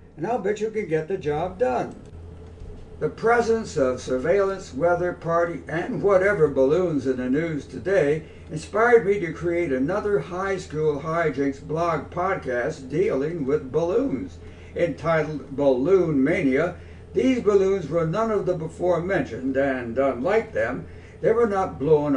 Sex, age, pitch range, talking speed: male, 60-79, 125-180 Hz, 145 wpm